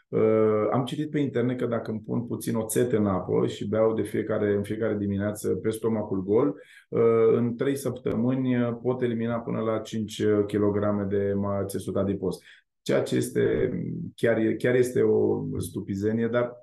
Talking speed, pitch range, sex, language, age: 160 wpm, 105-125 Hz, male, Romanian, 20-39